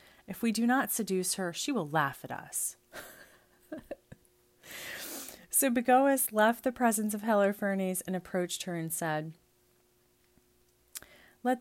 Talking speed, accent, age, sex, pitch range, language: 125 wpm, American, 30-49, female, 160-200 Hz, English